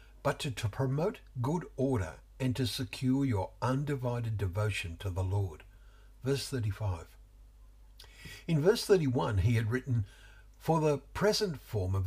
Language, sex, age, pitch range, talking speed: English, male, 60-79, 100-130 Hz, 140 wpm